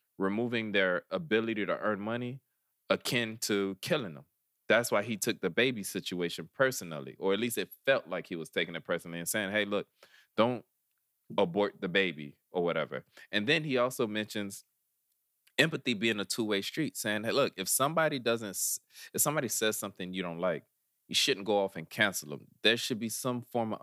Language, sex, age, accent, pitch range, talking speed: English, male, 20-39, American, 100-120 Hz, 185 wpm